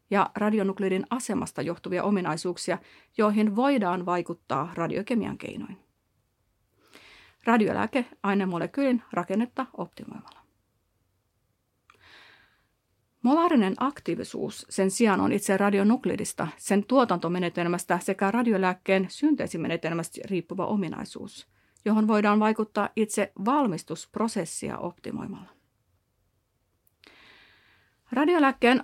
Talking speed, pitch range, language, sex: 75 wpm, 175-225 Hz, Finnish, female